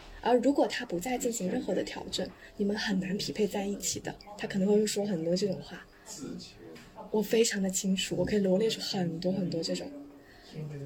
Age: 20-39